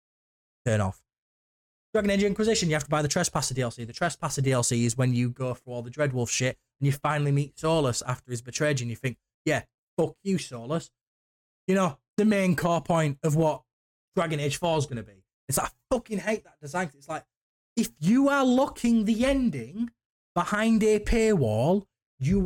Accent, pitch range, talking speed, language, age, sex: British, 125-195 Hz, 195 wpm, English, 20-39, male